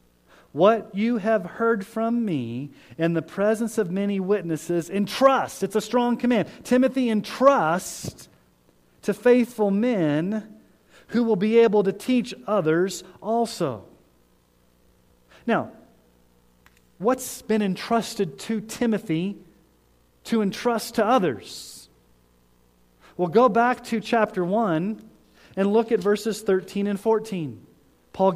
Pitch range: 155-220 Hz